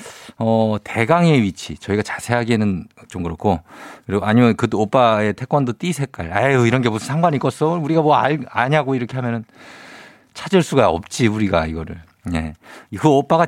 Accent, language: native, Korean